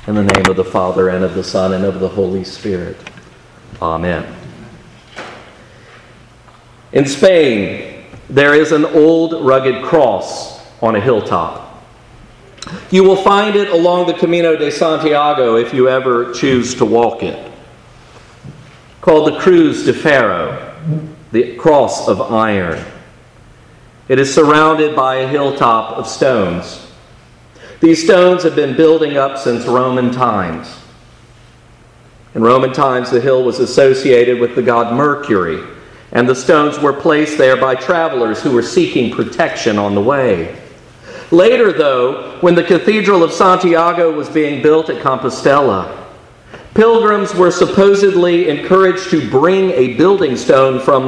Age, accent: 40-59, American